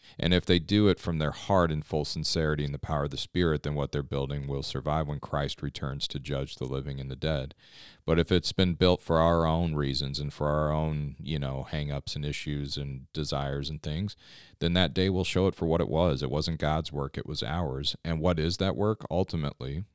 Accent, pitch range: American, 75-85 Hz